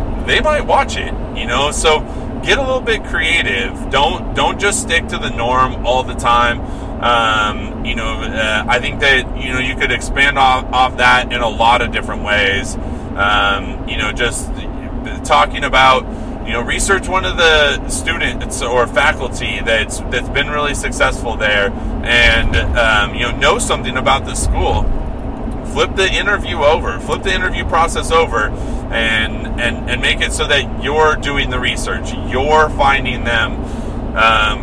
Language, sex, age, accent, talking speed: English, male, 30-49, American, 170 wpm